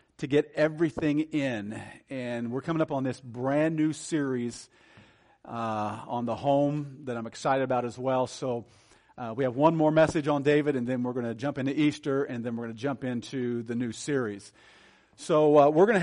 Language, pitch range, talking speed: English, 120-170 Hz, 205 wpm